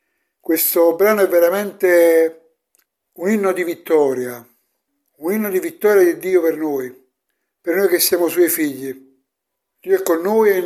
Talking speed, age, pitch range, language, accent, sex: 160 wpm, 60-79, 175-265 Hz, Italian, native, male